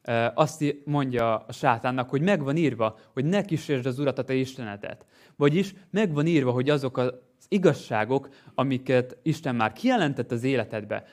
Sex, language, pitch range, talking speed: male, Hungarian, 125-145 Hz, 160 wpm